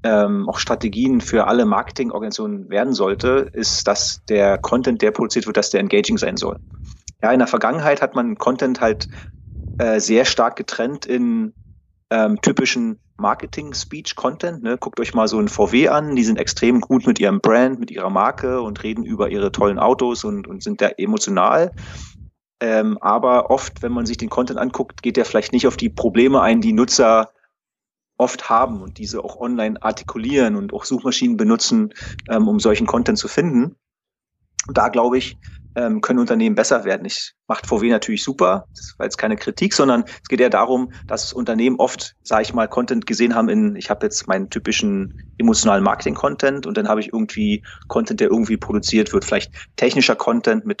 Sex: male